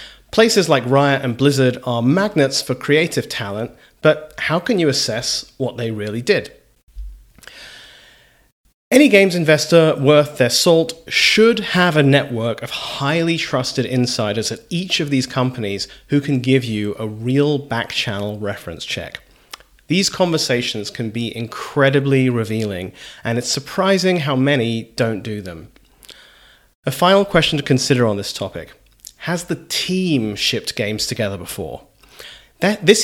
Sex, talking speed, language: male, 140 wpm, English